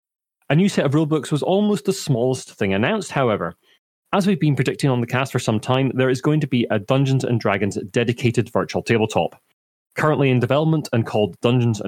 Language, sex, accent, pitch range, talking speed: English, male, British, 110-145 Hz, 195 wpm